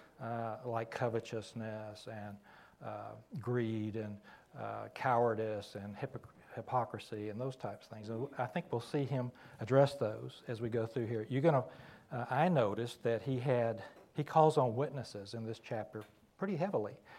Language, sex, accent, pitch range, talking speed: English, male, American, 115-140 Hz, 165 wpm